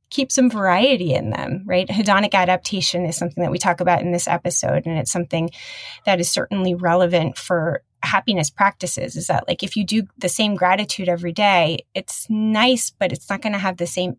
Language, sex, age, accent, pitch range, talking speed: English, female, 20-39, American, 175-205 Hz, 205 wpm